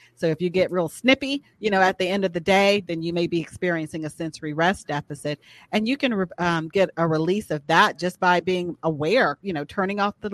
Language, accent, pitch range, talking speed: English, American, 160-200 Hz, 240 wpm